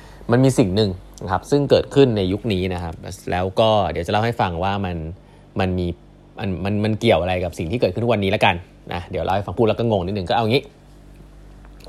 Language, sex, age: Thai, male, 20-39